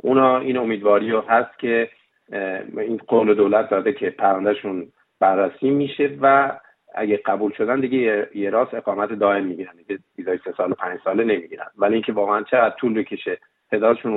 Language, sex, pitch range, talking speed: Persian, male, 100-125 Hz, 150 wpm